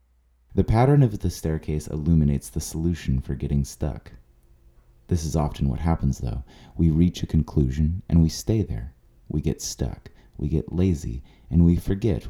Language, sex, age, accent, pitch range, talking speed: English, male, 30-49, American, 65-85 Hz, 165 wpm